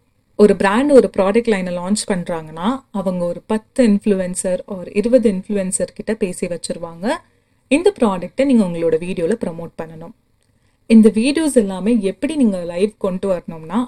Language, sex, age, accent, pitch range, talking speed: Tamil, female, 30-49, native, 180-235 Hz, 135 wpm